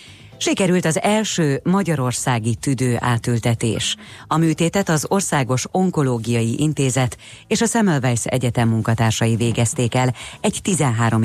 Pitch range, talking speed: 115-155 Hz, 110 wpm